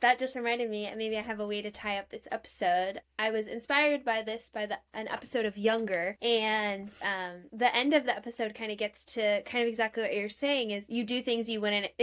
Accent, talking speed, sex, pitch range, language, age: American, 245 wpm, female, 210-260 Hz, English, 10-29